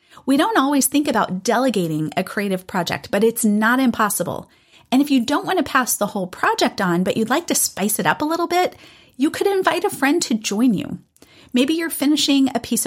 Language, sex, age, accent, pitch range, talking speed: English, female, 40-59, American, 205-285 Hz, 220 wpm